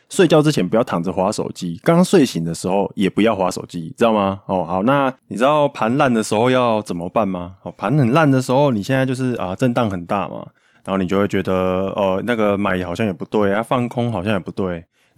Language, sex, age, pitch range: Chinese, male, 20-39, 95-120 Hz